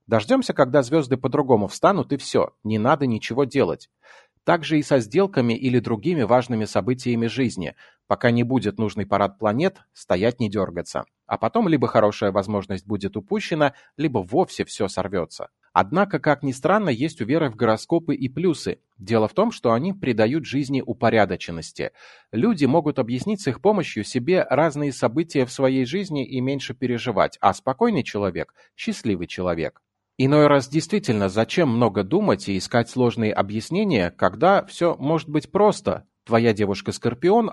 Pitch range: 110-155 Hz